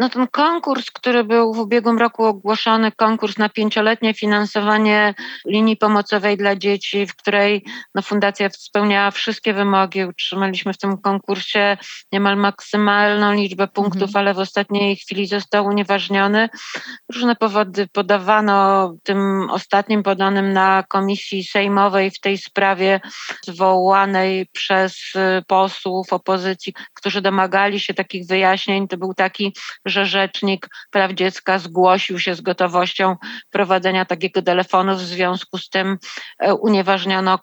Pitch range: 190-220 Hz